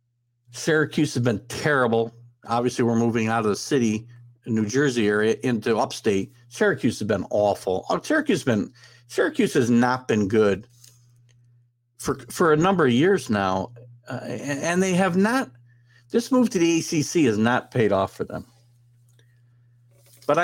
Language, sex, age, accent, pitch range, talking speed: English, male, 60-79, American, 120-125 Hz, 145 wpm